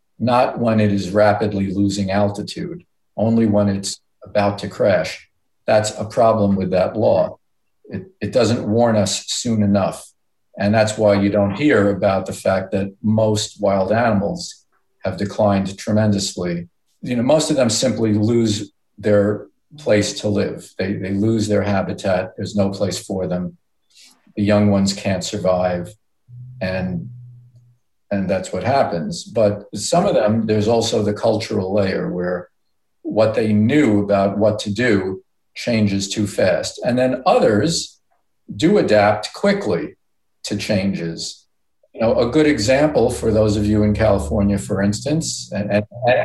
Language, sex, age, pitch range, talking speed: English, male, 50-69, 100-110 Hz, 150 wpm